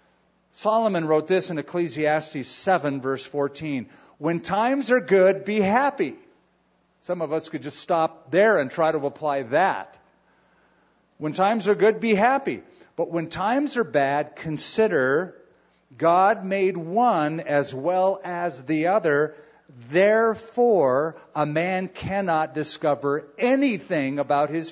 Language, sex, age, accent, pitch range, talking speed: English, male, 50-69, American, 145-195 Hz, 130 wpm